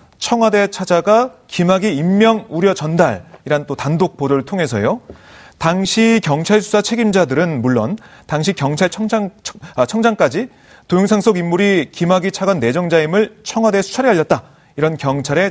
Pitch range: 150-210 Hz